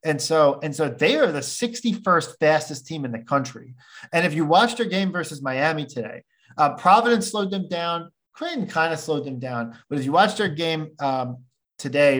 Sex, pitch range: male, 130-165 Hz